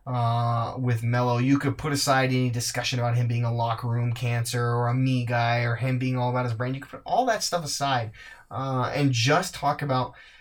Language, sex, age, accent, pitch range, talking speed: English, male, 20-39, American, 125-155 Hz, 225 wpm